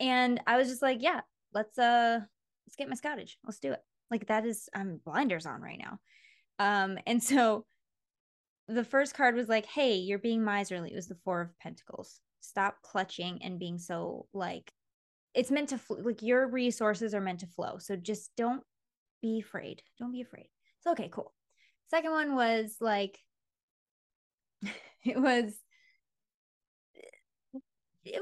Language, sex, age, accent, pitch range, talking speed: English, female, 20-39, American, 205-290 Hz, 165 wpm